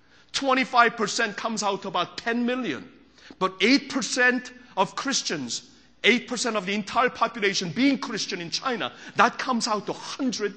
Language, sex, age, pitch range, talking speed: English, male, 40-59, 195-255 Hz, 135 wpm